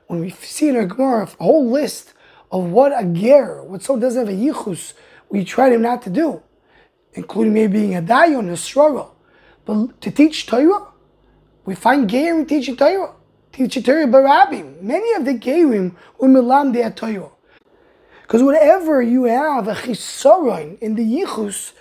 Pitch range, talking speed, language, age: 225-295 Hz, 165 wpm, English, 20-39